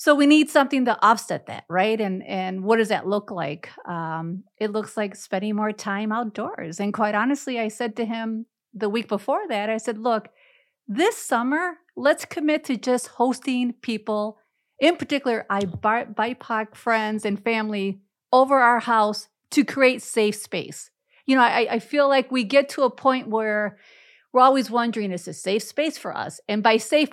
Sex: female